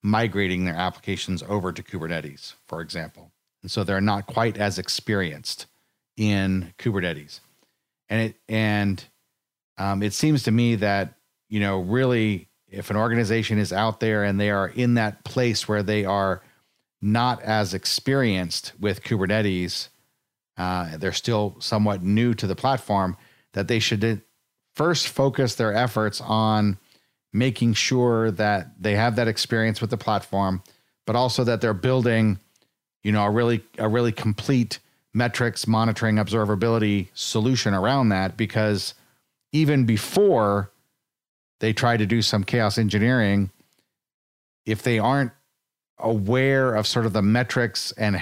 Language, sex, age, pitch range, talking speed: English, male, 40-59, 100-120 Hz, 140 wpm